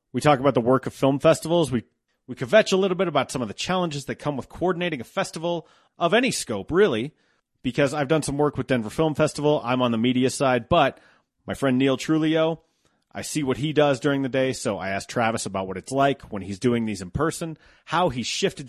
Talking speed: 235 wpm